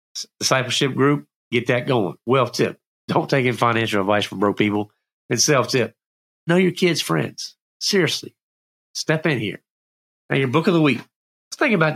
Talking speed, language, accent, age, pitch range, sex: 175 wpm, English, American, 40-59, 90-135 Hz, male